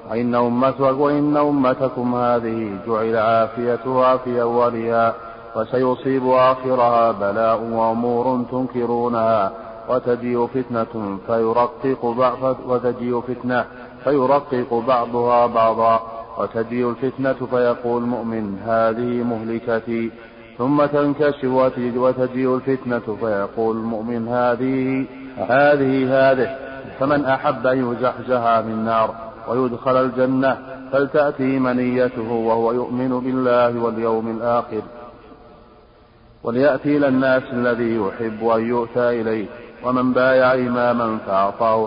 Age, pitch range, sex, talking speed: 40-59, 115-130 Hz, male, 85 wpm